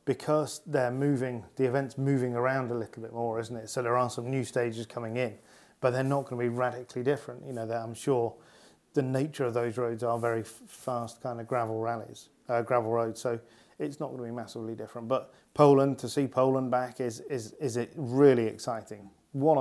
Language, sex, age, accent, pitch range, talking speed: English, male, 30-49, British, 120-140 Hz, 210 wpm